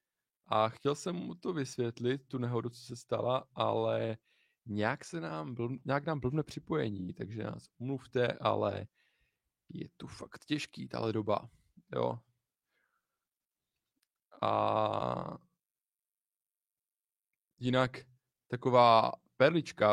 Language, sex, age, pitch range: Czech, male, 20-39, 110-125 Hz